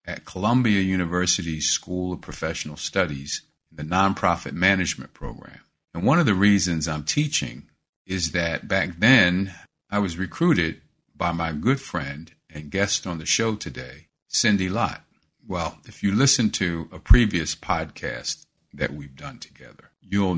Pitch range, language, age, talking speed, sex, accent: 80-95 Hz, English, 50-69, 150 wpm, male, American